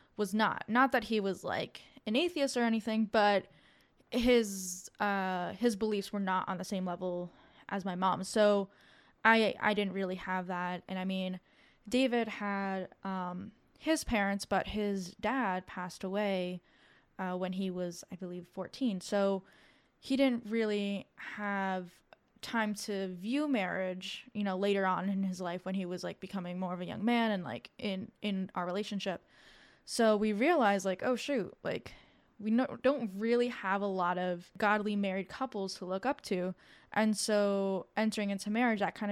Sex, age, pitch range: female, 10-29, 190-220 Hz